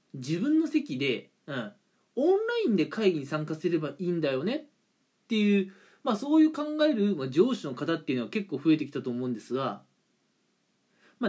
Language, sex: Japanese, male